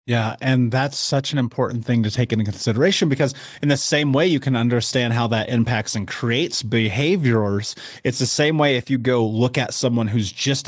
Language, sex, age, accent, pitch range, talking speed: English, male, 30-49, American, 110-130 Hz, 210 wpm